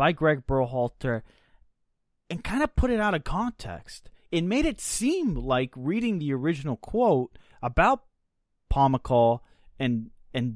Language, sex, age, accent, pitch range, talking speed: English, male, 20-39, American, 110-170 Hz, 135 wpm